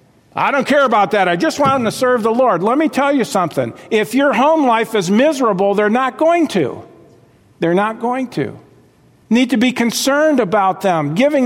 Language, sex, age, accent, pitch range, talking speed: English, male, 50-69, American, 125-190 Hz, 210 wpm